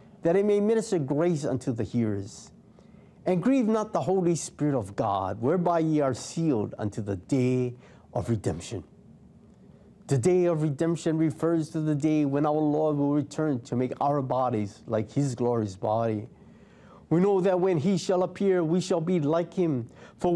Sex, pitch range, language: male, 120-170 Hz, English